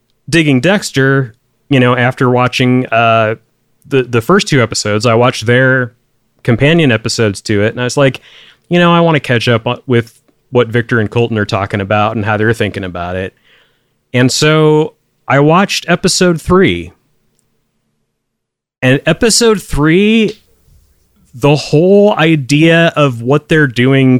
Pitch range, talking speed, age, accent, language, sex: 115-150 Hz, 150 wpm, 30-49, American, English, male